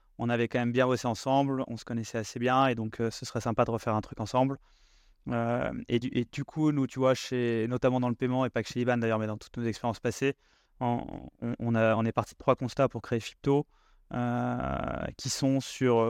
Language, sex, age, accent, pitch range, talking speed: French, male, 20-39, French, 115-130 Hz, 240 wpm